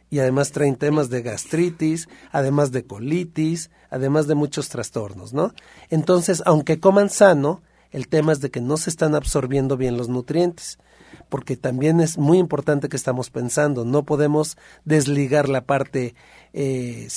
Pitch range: 135-170 Hz